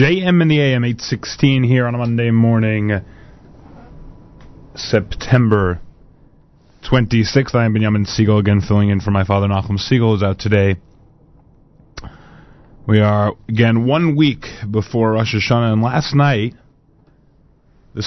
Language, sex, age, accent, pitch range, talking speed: English, male, 30-49, American, 95-120 Hz, 145 wpm